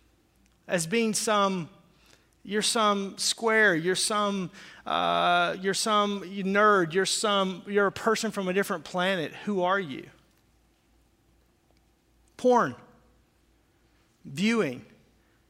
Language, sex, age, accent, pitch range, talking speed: English, male, 40-59, American, 170-205 Hz, 100 wpm